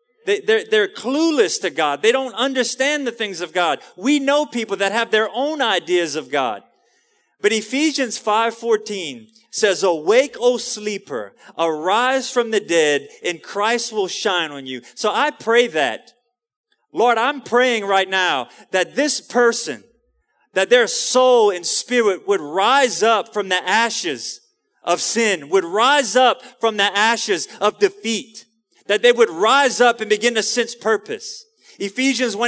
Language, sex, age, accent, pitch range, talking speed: English, male, 30-49, American, 200-265 Hz, 155 wpm